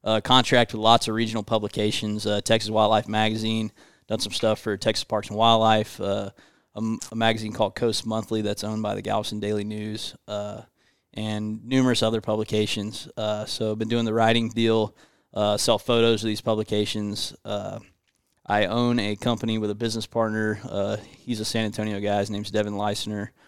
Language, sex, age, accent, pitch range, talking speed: English, male, 20-39, American, 105-115 Hz, 180 wpm